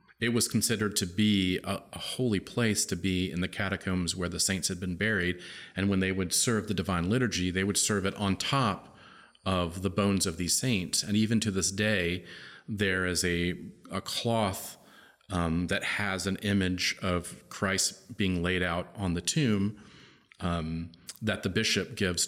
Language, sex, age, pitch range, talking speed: English, male, 40-59, 85-100 Hz, 185 wpm